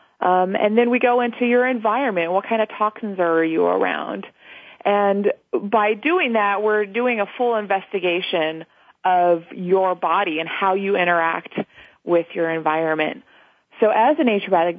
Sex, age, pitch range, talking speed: female, 30-49, 175-225 Hz, 155 wpm